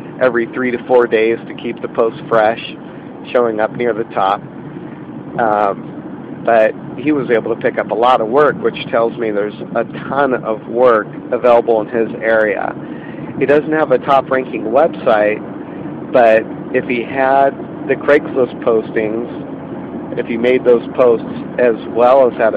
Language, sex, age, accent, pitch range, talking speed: English, male, 40-59, American, 110-130 Hz, 165 wpm